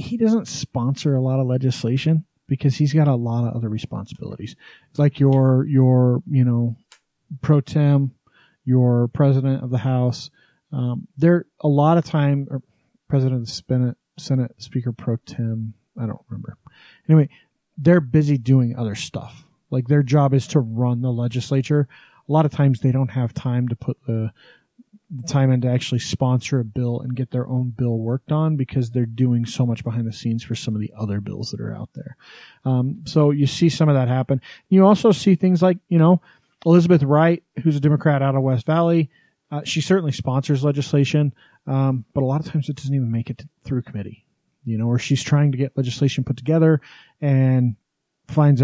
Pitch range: 125-150 Hz